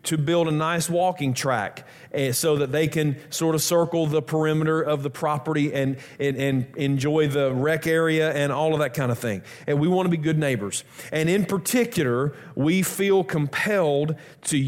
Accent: American